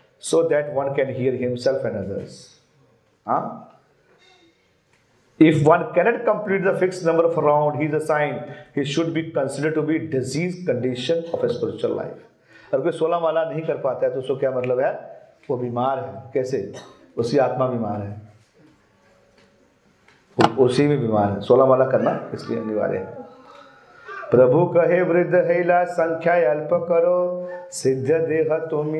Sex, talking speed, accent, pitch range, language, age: male, 140 wpm, native, 140-180 Hz, Hindi, 50-69